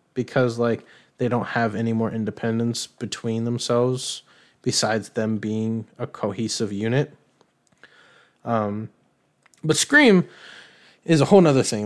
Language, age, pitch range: English, 20-39, 115-145 Hz